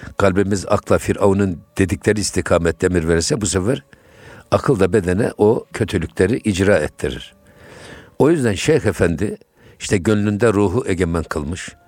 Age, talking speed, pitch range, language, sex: 60-79, 125 wpm, 90-110 Hz, Turkish, male